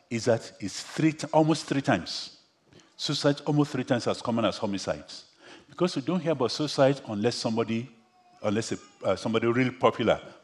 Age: 50-69